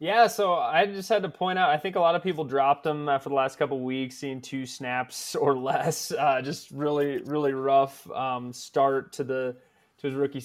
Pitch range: 120-140 Hz